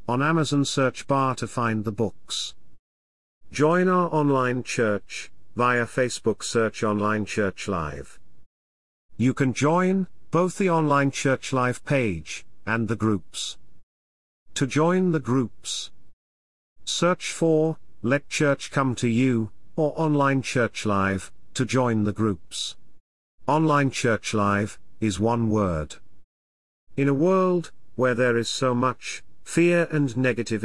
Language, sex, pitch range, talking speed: English, male, 100-145 Hz, 125 wpm